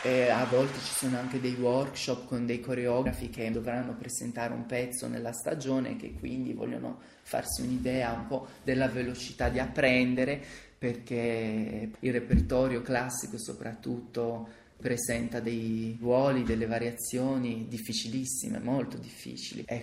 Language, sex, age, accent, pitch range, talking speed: Italian, male, 20-39, native, 120-135 Hz, 135 wpm